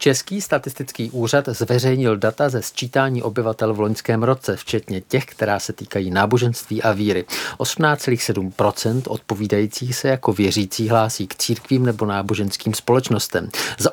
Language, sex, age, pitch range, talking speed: Czech, male, 50-69, 105-130 Hz, 135 wpm